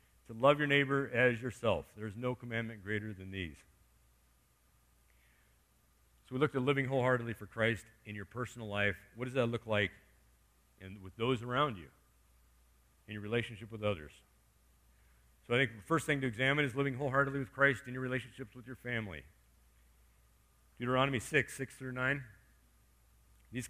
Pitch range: 95-135 Hz